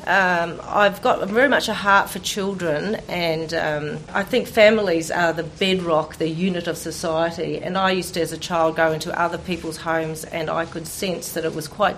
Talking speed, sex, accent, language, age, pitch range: 205 wpm, female, Australian, English, 40-59, 150-170 Hz